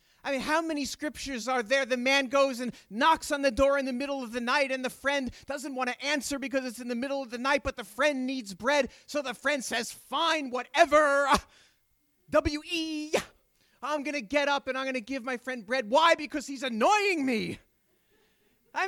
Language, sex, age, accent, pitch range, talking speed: English, male, 30-49, American, 255-310 Hz, 215 wpm